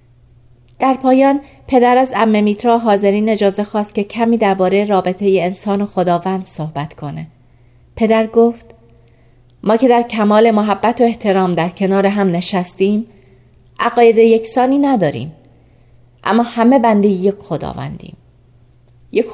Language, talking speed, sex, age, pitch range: Persian, 120 wpm, female, 30-49, 150-225 Hz